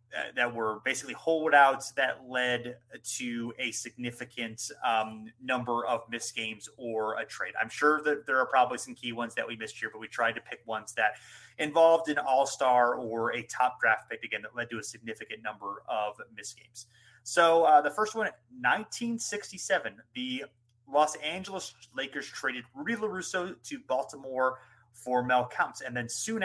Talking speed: 170 wpm